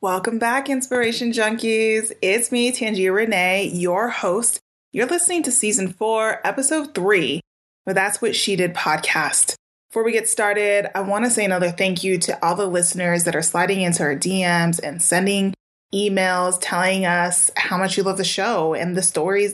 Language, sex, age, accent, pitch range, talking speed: English, female, 20-39, American, 180-225 Hz, 175 wpm